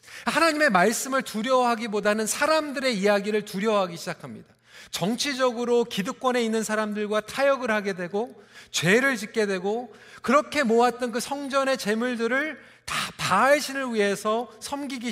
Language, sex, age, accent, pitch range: Korean, male, 40-59, native, 175-250 Hz